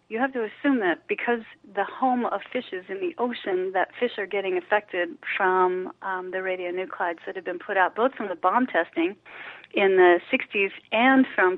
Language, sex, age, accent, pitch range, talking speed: English, female, 30-49, American, 185-275 Hz, 190 wpm